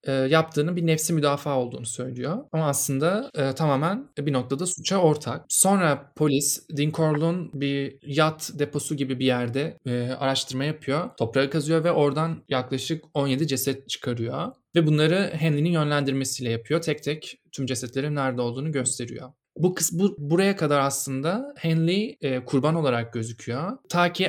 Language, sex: Turkish, male